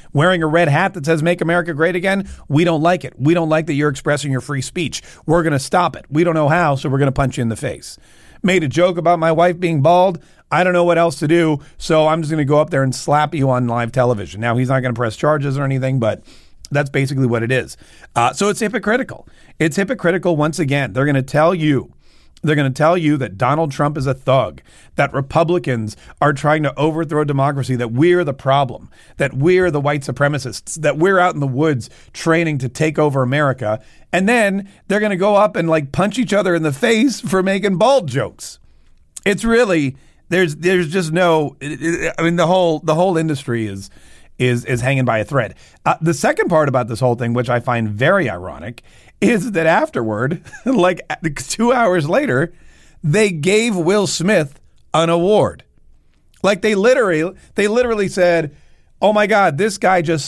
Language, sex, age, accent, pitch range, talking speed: English, male, 40-59, American, 135-180 Hz, 215 wpm